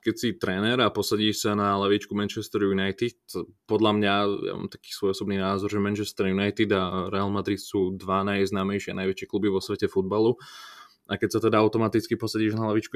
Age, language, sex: 20-39, Slovak, male